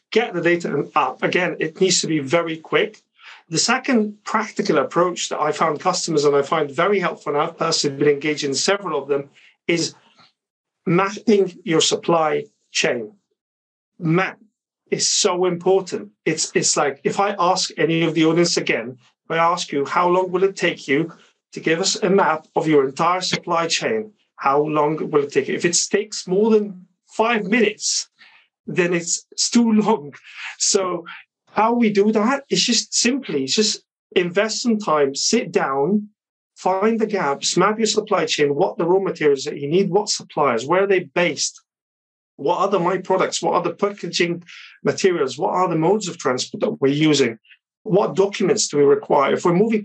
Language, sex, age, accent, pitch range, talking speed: English, male, 40-59, British, 160-215 Hz, 180 wpm